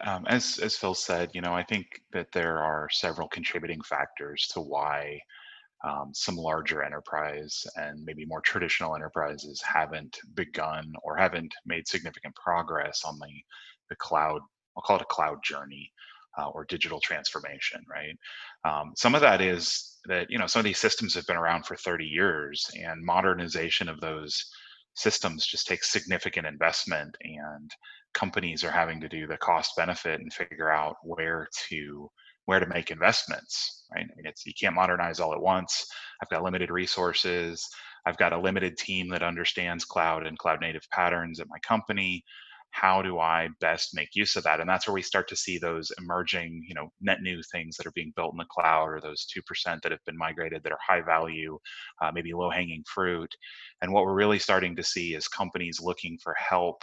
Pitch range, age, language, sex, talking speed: 75-90 Hz, 30-49, English, male, 190 wpm